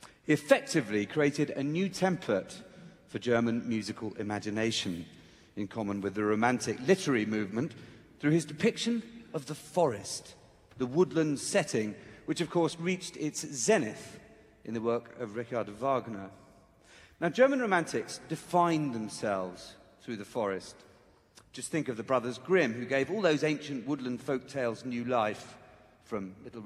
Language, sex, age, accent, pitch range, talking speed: English, male, 40-59, British, 110-170 Hz, 140 wpm